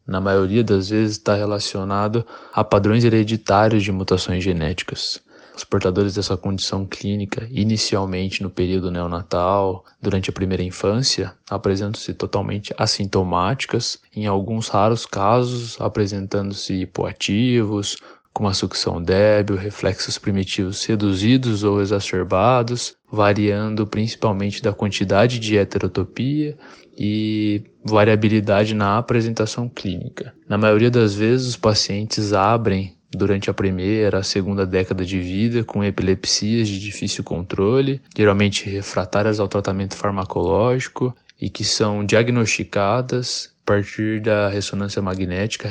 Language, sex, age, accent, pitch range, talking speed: Portuguese, male, 20-39, Brazilian, 95-110 Hz, 115 wpm